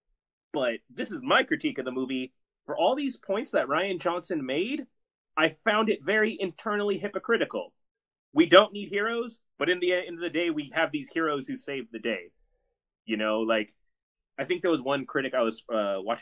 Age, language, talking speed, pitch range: 30-49, English, 200 wpm, 130-215 Hz